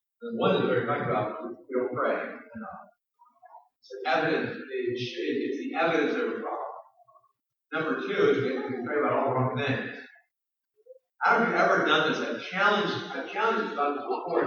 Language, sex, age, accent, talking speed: English, male, 40-59, American, 190 wpm